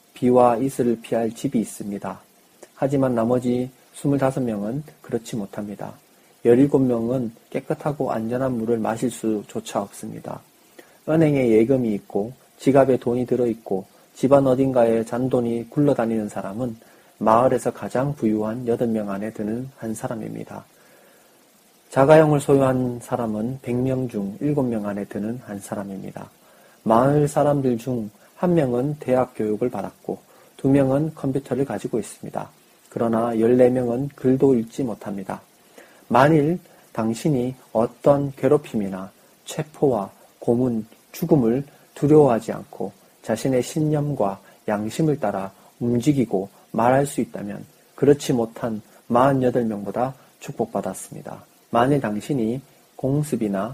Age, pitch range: 40-59, 110-135 Hz